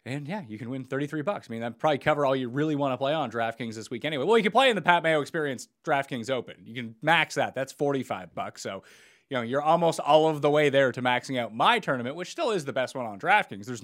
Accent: American